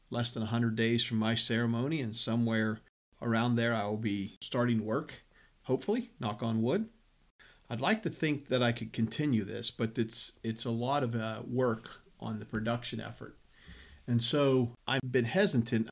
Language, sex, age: English, male, 40-59